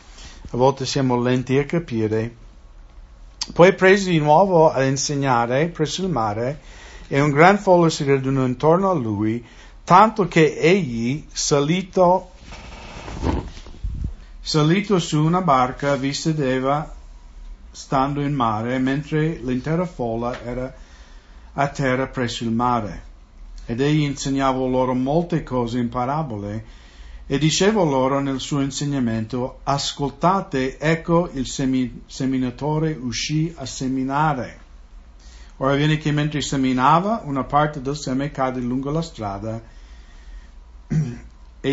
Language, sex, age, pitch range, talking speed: English, male, 50-69, 115-155 Hz, 115 wpm